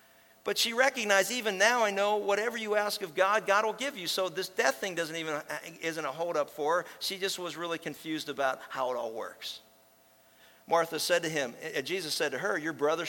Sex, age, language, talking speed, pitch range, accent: male, 50-69, English, 225 wpm, 115-185 Hz, American